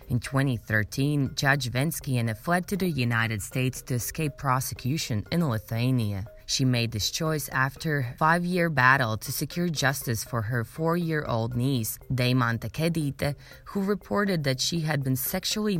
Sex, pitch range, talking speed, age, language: female, 120-155 Hz, 145 wpm, 20-39, English